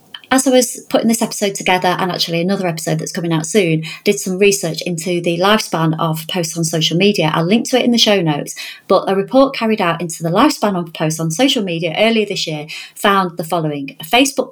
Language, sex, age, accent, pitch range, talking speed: English, female, 30-49, British, 165-220 Hz, 225 wpm